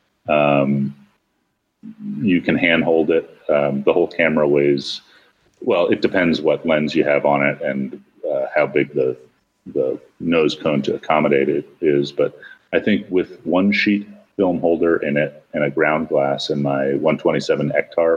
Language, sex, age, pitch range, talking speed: English, male, 30-49, 70-90 Hz, 165 wpm